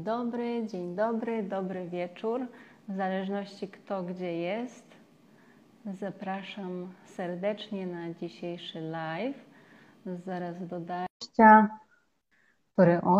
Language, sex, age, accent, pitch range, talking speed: Polish, female, 30-49, native, 180-215 Hz, 85 wpm